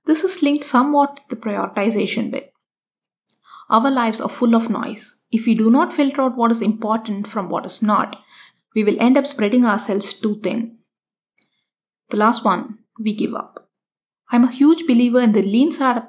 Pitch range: 210-255 Hz